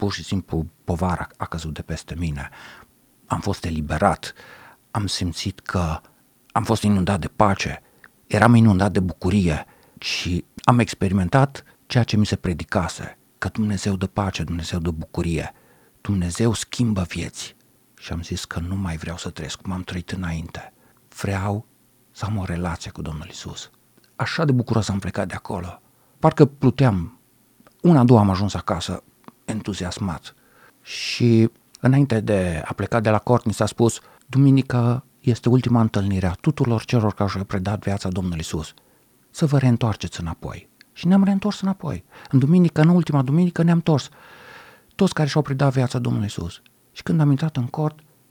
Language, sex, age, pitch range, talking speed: Romanian, male, 50-69, 90-130 Hz, 165 wpm